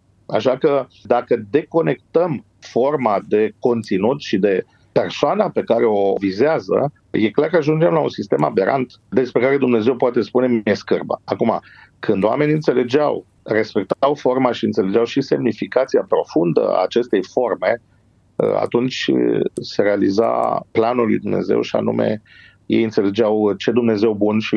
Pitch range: 105-125 Hz